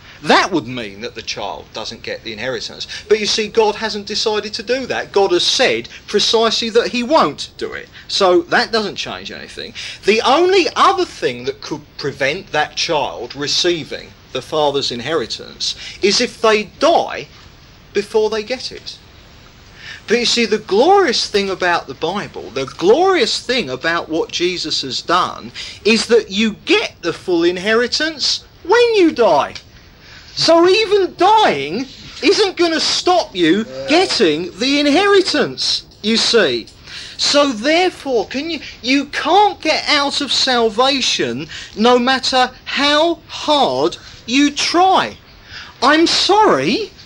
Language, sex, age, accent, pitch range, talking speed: English, male, 40-59, British, 220-360 Hz, 145 wpm